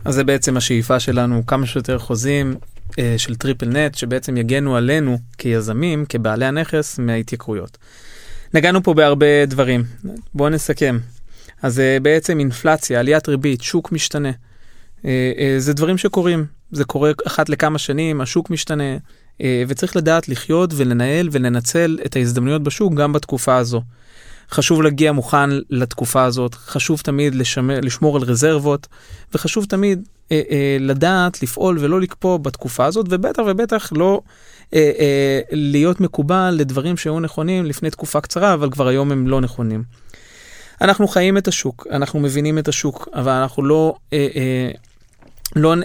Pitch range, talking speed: 130-155 Hz, 130 wpm